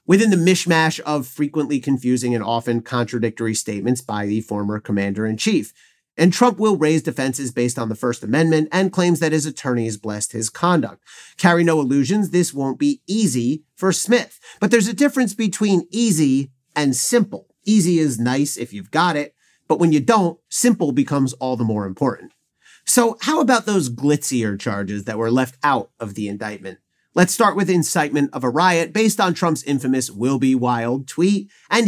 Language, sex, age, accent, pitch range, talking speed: English, male, 40-59, American, 120-180 Hz, 180 wpm